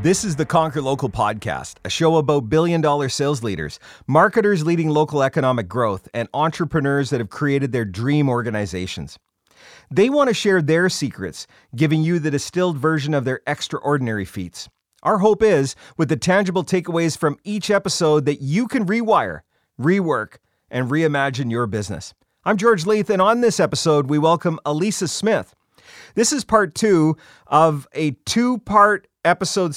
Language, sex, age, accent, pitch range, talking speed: English, male, 40-59, American, 140-190 Hz, 155 wpm